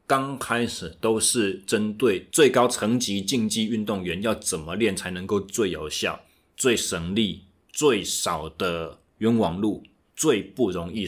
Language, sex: Chinese, male